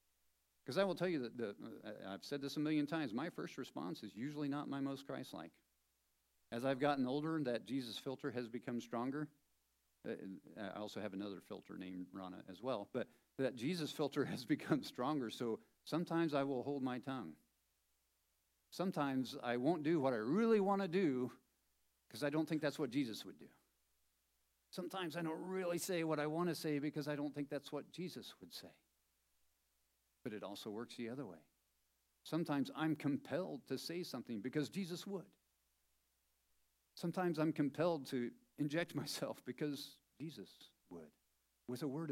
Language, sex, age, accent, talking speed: English, male, 50-69, American, 175 wpm